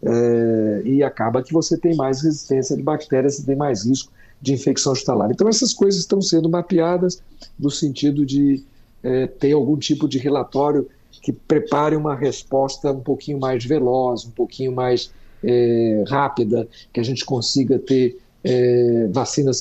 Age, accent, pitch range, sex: 50-69, Brazilian, 120-145 Hz, male